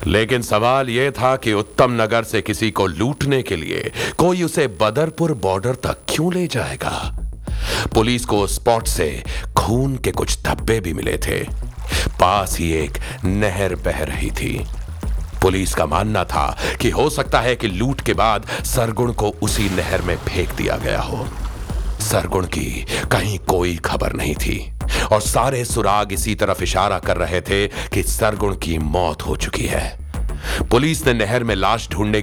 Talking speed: 160 wpm